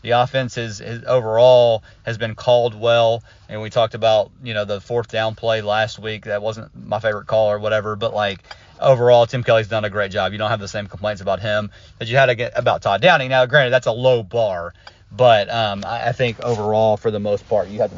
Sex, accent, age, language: male, American, 30-49, English